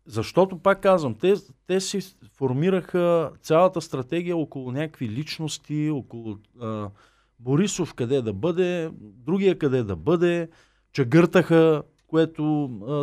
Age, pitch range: 40-59, 125-175 Hz